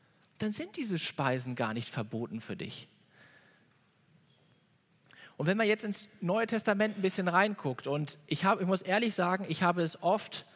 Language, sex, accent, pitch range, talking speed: German, male, German, 170-210 Hz, 165 wpm